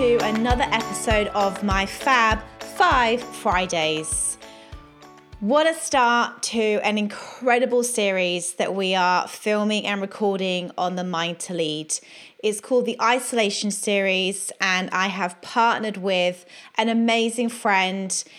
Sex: female